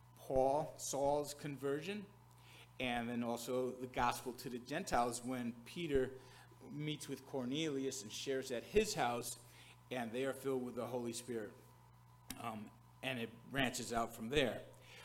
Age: 50-69